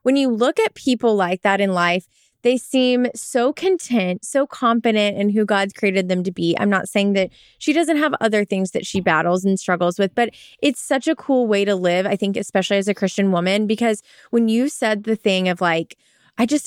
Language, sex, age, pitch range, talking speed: English, female, 20-39, 190-245 Hz, 225 wpm